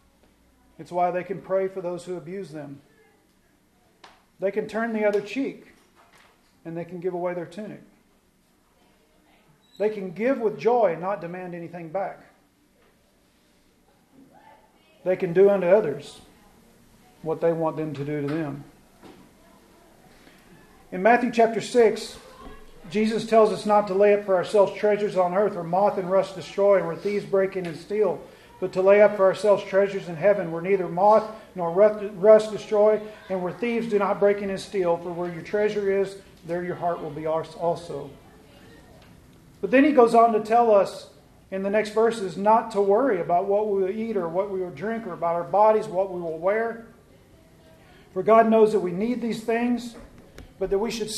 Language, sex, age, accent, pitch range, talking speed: English, male, 40-59, American, 180-215 Hz, 180 wpm